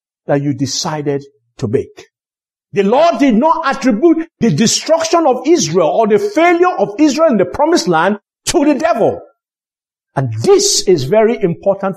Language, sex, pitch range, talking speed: English, male, 195-315 Hz, 155 wpm